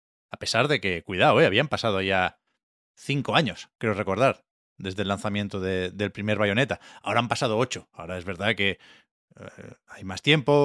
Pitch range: 100-125 Hz